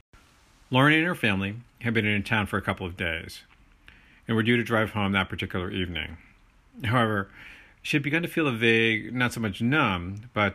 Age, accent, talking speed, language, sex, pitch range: 40-59, American, 200 wpm, English, male, 95-125 Hz